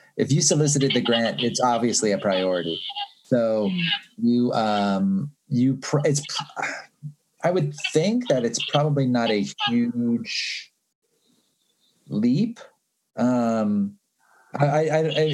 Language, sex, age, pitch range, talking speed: English, male, 30-49, 110-145 Hz, 105 wpm